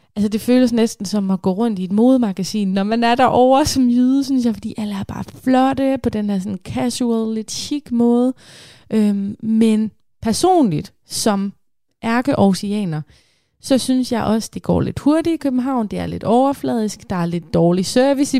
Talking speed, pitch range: 190 wpm, 185-240 Hz